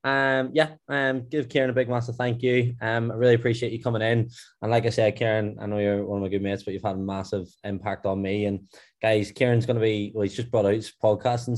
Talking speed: 270 wpm